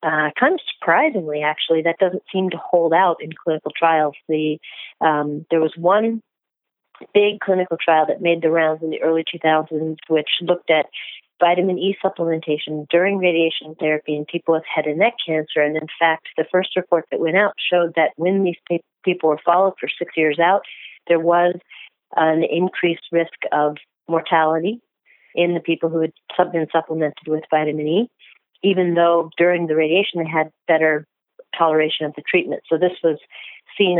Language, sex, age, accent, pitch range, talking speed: English, female, 40-59, American, 155-180 Hz, 175 wpm